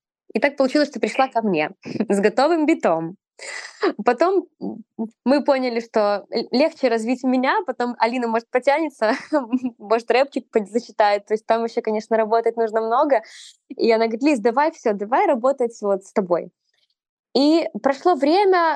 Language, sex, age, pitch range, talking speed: Russian, female, 20-39, 205-265 Hz, 145 wpm